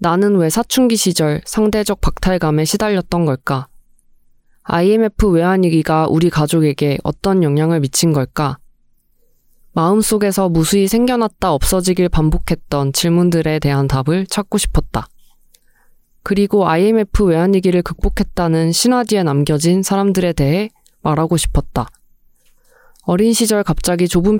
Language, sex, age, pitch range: Korean, female, 20-39, 160-205 Hz